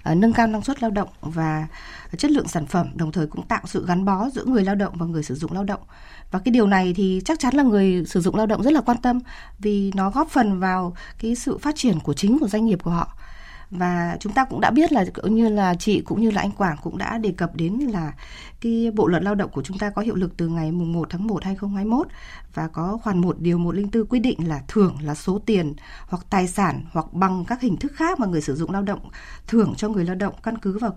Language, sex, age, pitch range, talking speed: Vietnamese, female, 20-39, 180-235 Hz, 270 wpm